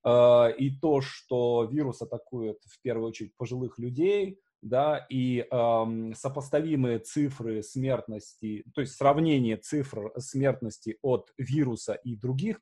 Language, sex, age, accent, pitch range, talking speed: Russian, male, 20-39, native, 115-150 Hz, 120 wpm